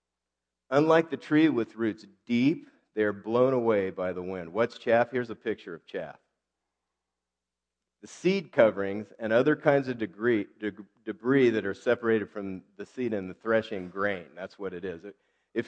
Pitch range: 95-130 Hz